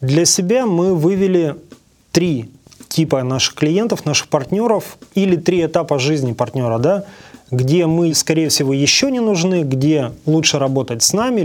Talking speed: 145 wpm